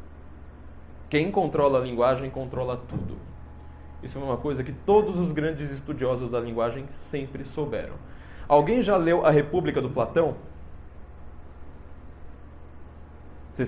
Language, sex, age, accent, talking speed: English, male, 20-39, Brazilian, 120 wpm